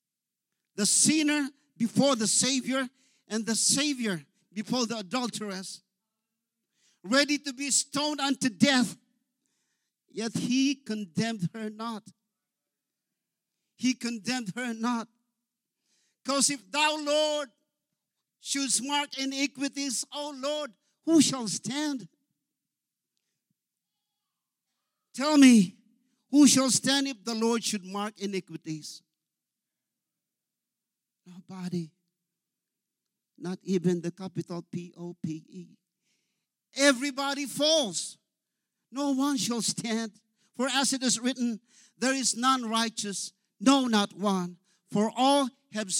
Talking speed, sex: 100 wpm, male